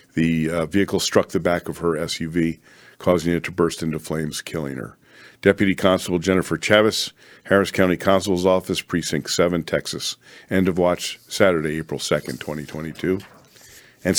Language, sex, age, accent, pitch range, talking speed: English, male, 50-69, American, 85-105 Hz, 150 wpm